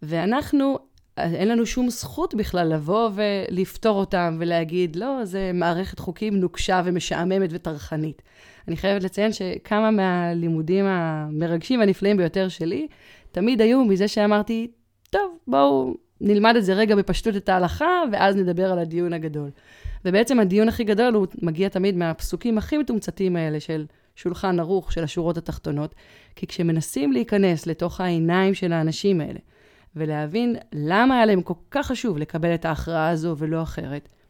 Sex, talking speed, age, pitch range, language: female, 145 wpm, 20-39, 165-210 Hz, Hebrew